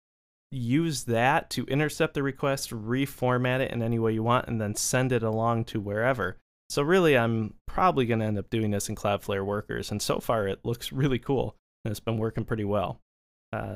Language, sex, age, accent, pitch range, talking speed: English, male, 20-39, American, 105-130 Hz, 205 wpm